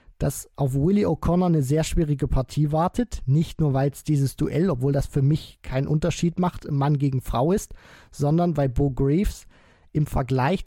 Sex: male